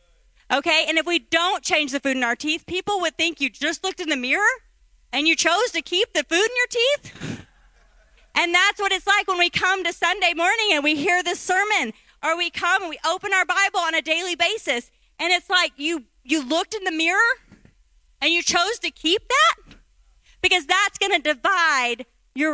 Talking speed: 210 wpm